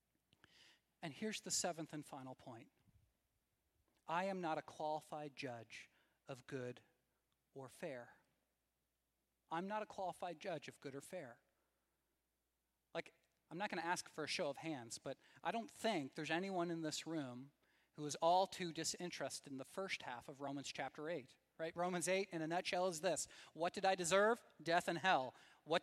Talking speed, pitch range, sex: 175 wpm, 145-200 Hz, male